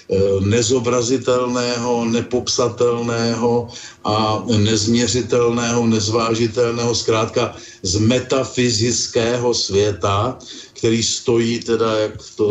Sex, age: male, 50-69